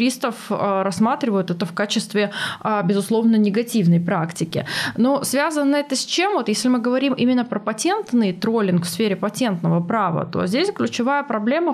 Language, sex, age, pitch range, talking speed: Russian, female, 20-39, 195-250 Hz, 145 wpm